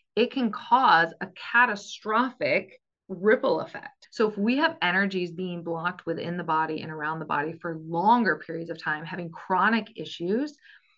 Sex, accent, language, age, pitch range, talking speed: female, American, English, 30-49, 170-215 Hz, 160 wpm